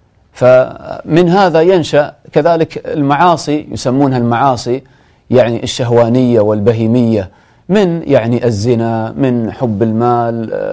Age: 30-49